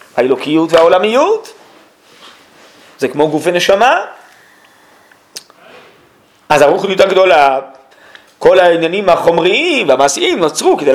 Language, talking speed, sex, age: Hebrew, 80 wpm, male, 40-59